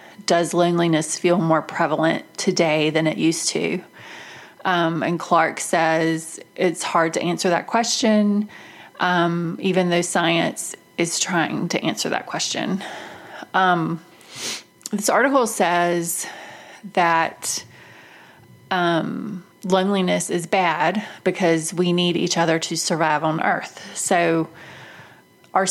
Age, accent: 30-49, American